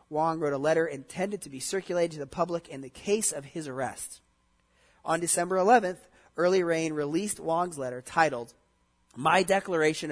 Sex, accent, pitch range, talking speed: male, American, 140-185 Hz, 165 wpm